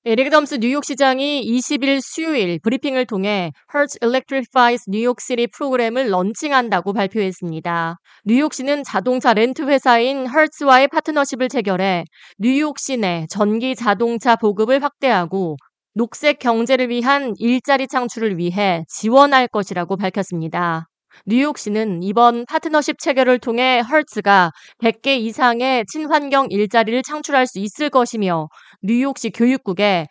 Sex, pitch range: female, 200-270 Hz